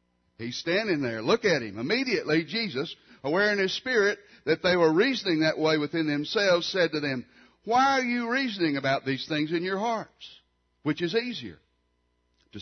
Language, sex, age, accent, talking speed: English, male, 60-79, American, 175 wpm